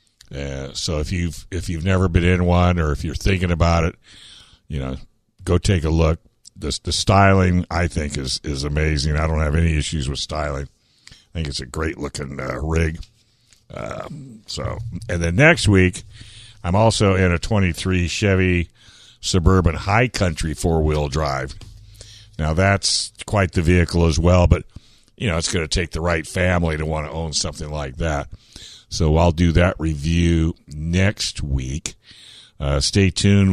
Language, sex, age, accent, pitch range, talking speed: English, male, 60-79, American, 80-100 Hz, 175 wpm